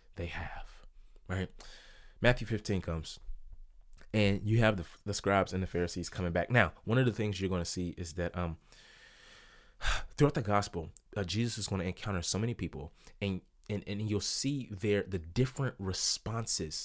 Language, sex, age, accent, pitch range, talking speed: English, male, 20-39, American, 95-135 Hz, 180 wpm